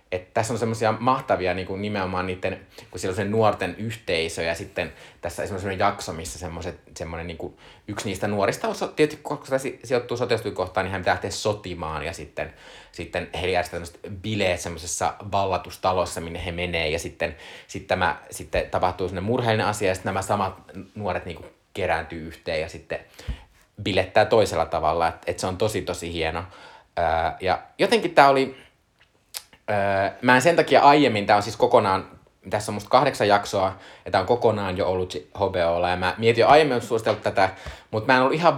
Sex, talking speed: male, 180 wpm